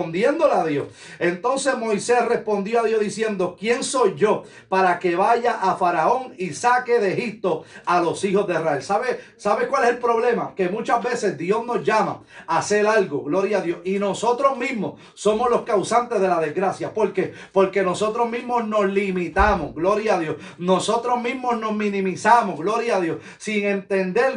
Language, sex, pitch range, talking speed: Spanish, male, 180-230 Hz, 175 wpm